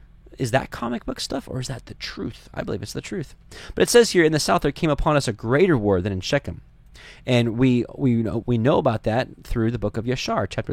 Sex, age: male, 20-39